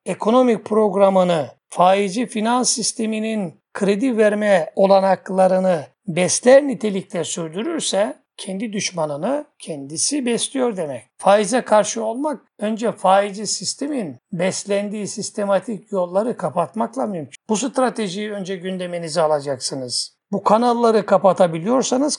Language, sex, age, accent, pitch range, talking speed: Turkish, male, 60-79, native, 190-235 Hz, 95 wpm